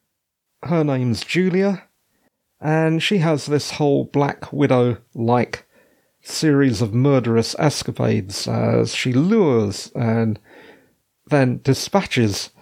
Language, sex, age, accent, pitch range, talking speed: English, male, 40-59, British, 120-170 Hz, 95 wpm